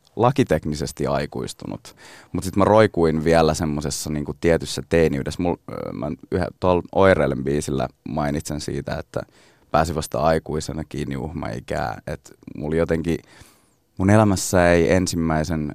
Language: Finnish